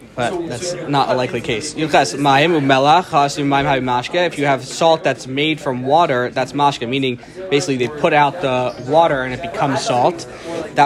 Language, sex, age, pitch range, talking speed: English, male, 20-39, 135-160 Hz, 155 wpm